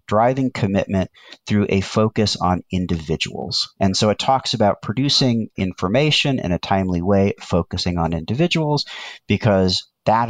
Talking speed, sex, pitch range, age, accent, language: 135 wpm, male, 85-115 Hz, 40-59, American, English